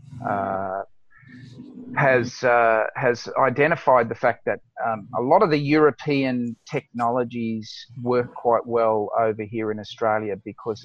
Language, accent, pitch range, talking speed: English, Australian, 110-130 Hz, 125 wpm